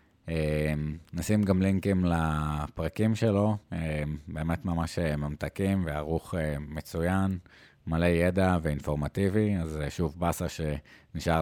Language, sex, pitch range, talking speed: Hebrew, male, 80-105 Hz, 90 wpm